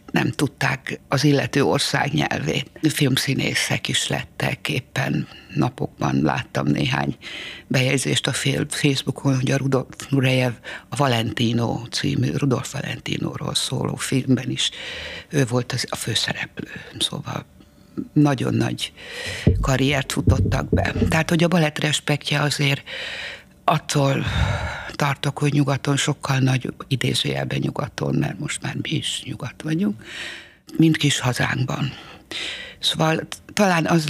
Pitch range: 135-155 Hz